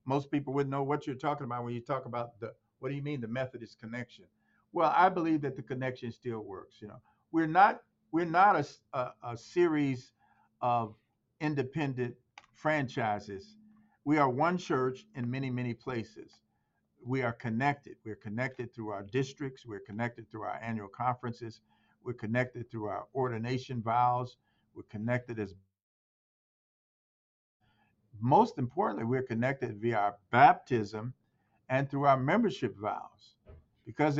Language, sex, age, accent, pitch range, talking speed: English, male, 50-69, American, 115-135 Hz, 145 wpm